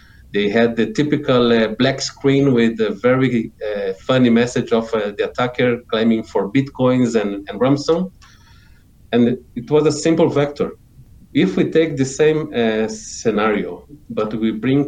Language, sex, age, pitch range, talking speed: English, male, 40-59, 105-130 Hz, 155 wpm